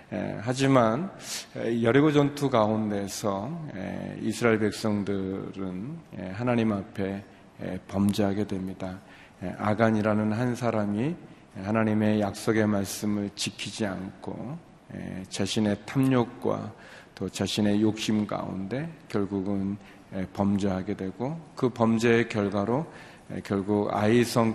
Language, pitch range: Korean, 100-115 Hz